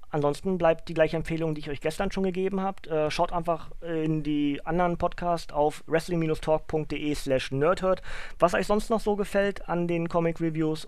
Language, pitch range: German, 135-175 Hz